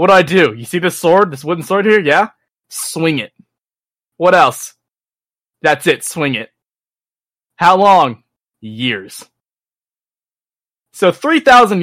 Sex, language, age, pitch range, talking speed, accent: male, English, 20-39, 135-180 Hz, 130 wpm, American